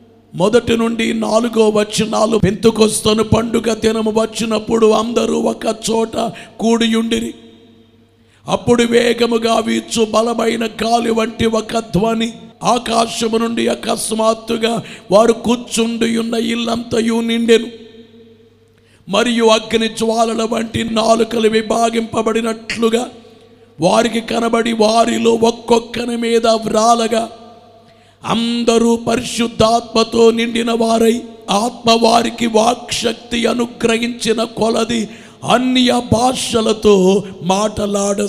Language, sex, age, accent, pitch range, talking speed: Telugu, male, 50-69, native, 200-230 Hz, 80 wpm